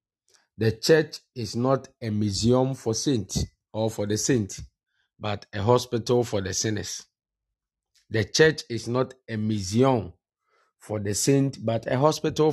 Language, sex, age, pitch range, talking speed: English, male, 50-69, 110-135 Hz, 145 wpm